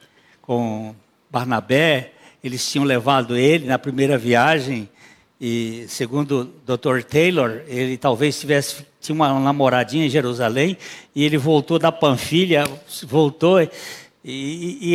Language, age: Portuguese, 60-79